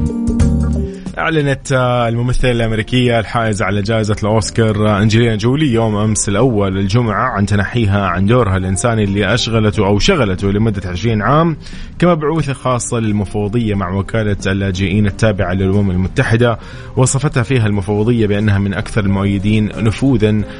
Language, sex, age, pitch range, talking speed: Arabic, male, 20-39, 100-120 Hz, 120 wpm